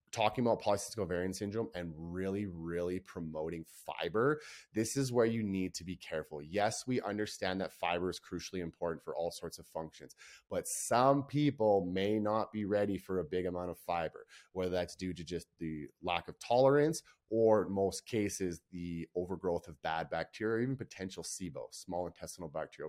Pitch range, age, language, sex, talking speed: 85-110 Hz, 30-49, English, male, 175 wpm